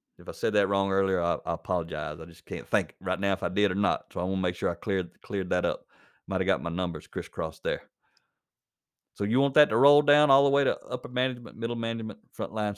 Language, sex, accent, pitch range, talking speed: English, male, American, 110-160 Hz, 255 wpm